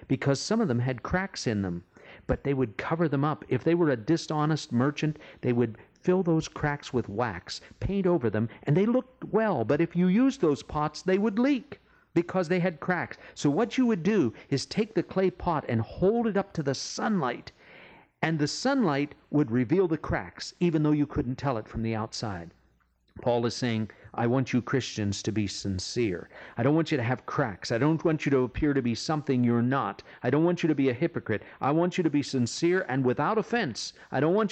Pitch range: 115-160 Hz